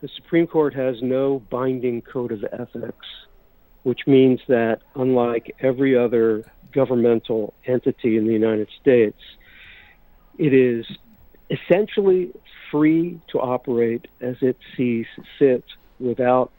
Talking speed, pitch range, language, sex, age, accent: 115 wpm, 120-140 Hz, English, male, 50-69, American